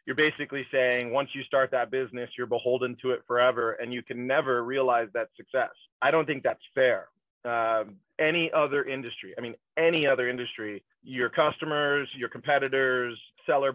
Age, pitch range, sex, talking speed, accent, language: 30-49, 120-140 Hz, male, 170 wpm, American, English